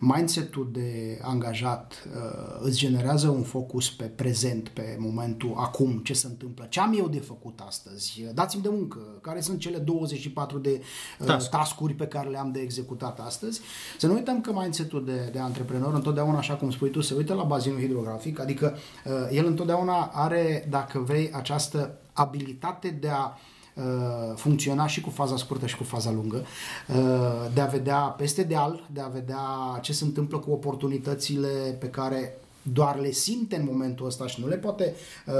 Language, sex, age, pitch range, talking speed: Romanian, male, 30-49, 125-150 Hz, 170 wpm